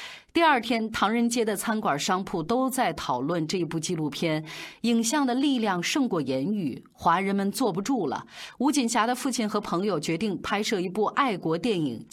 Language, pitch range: Chinese, 170-255 Hz